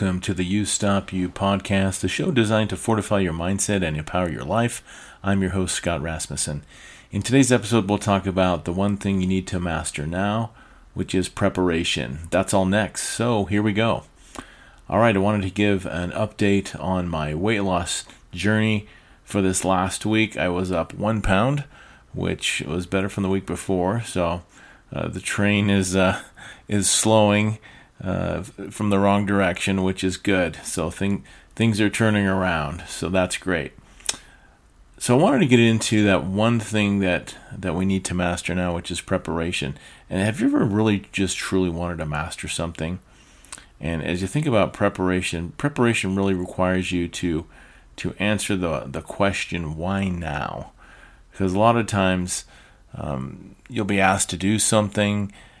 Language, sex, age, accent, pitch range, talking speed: English, male, 40-59, American, 90-105 Hz, 175 wpm